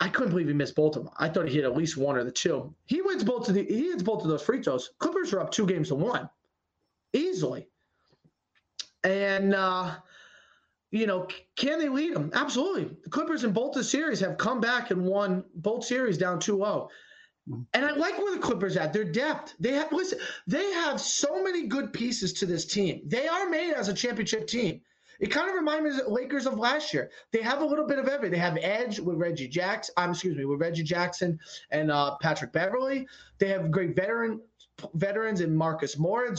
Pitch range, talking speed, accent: 180-260 Hz, 210 wpm, American